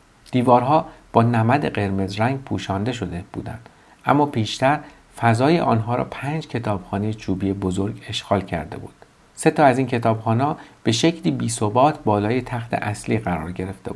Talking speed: 145 wpm